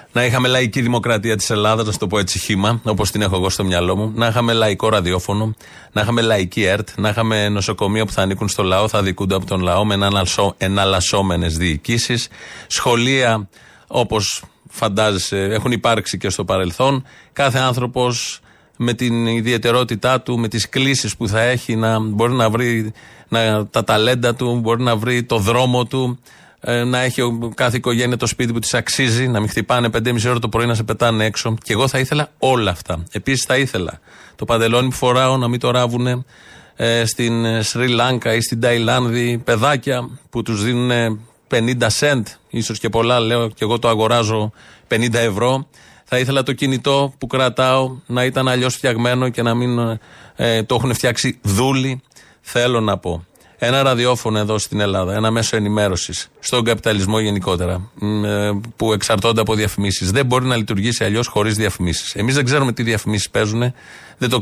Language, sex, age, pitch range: Greek, male, 30-49, 105-125 Hz